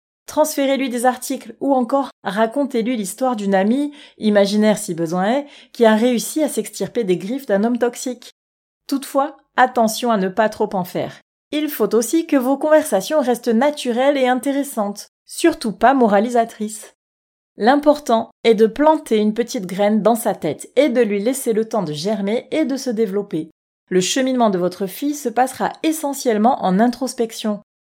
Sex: female